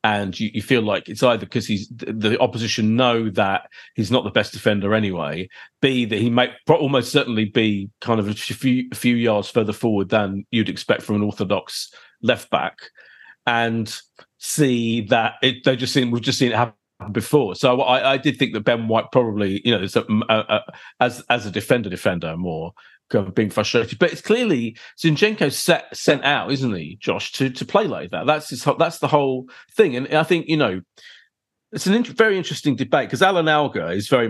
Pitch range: 110-145 Hz